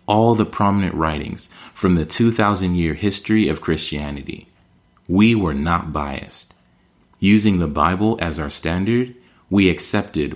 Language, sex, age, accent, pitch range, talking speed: English, male, 30-49, American, 80-100 Hz, 125 wpm